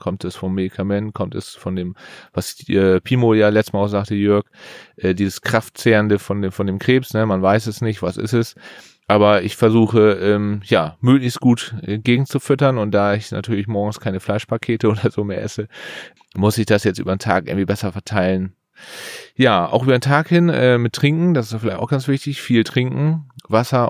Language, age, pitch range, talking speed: German, 30-49, 100-120 Hz, 195 wpm